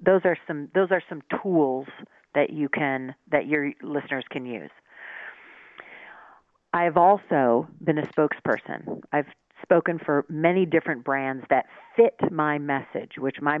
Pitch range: 140-175 Hz